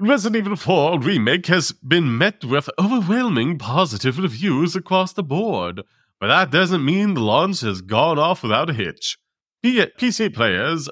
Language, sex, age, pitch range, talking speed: English, male, 30-49, 120-185 Hz, 160 wpm